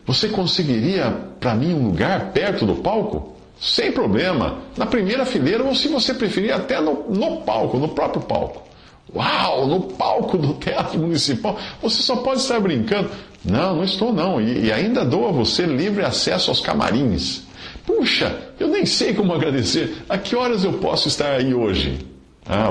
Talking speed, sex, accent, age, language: 170 wpm, male, Brazilian, 50-69, Portuguese